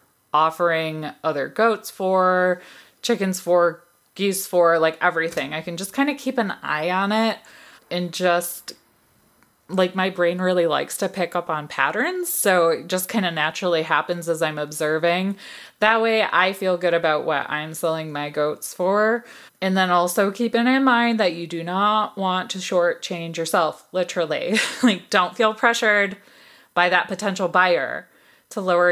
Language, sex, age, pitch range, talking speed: English, female, 20-39, 170-215 Hz, 165 wpm